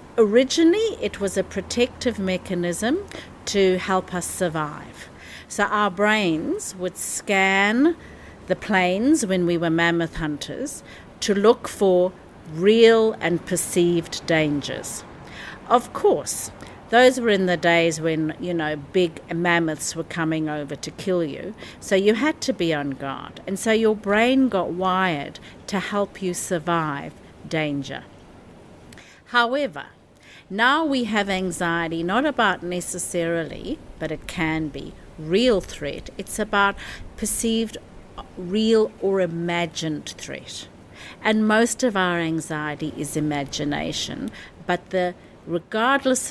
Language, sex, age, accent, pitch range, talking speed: English, female, 50-69, South African, 165-220 Hz, 125 wpm